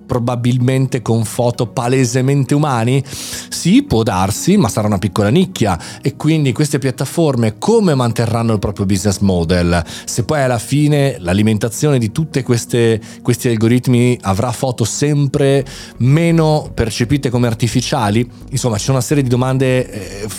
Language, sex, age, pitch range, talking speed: Italian, male, 30-49, 110-150 Hz, 140 wpm